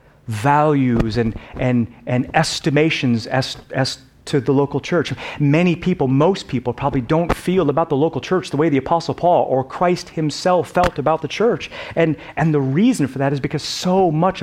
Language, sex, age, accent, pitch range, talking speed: English, male, 30-49, American, 135-195 Hz, 185 wpm